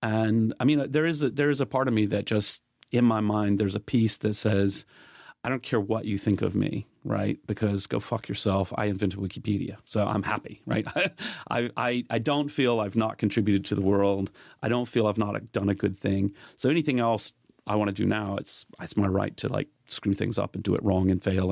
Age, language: 40-59, English